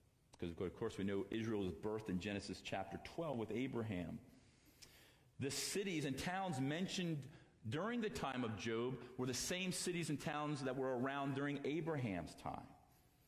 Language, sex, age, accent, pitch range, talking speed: English, male, 40-59, American, 125-170 Hz, 165 wpm